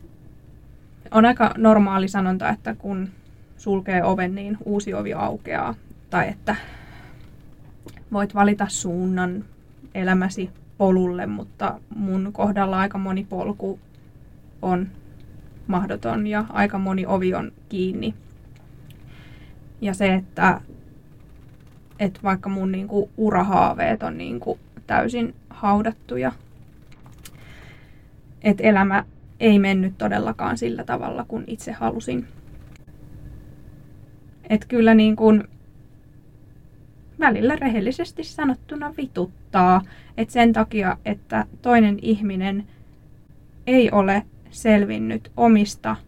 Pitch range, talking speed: 140-215 Hz, 90 wpm